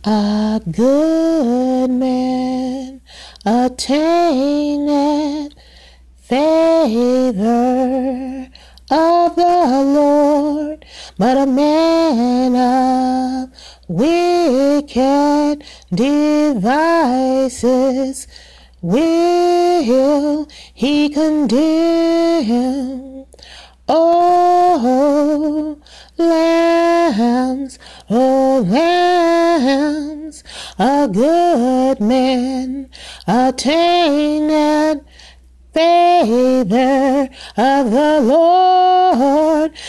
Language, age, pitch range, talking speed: English, 30-49, 260-325 Hz, 45 wpm